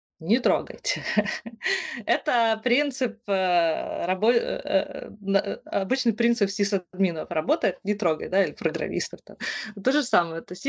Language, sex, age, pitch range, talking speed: Russian, female, 20-39, 185-230 Hz, 145 wpm